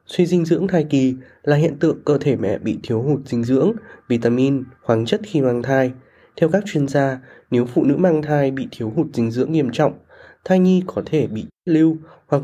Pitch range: 130-165 Hz